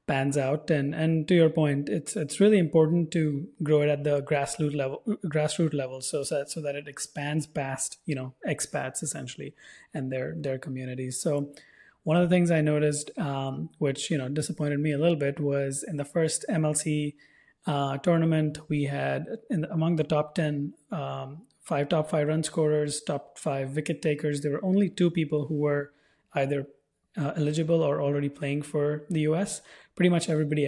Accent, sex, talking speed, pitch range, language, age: Indian, male, 185 wpm, 140-160 Hz, English, 20-39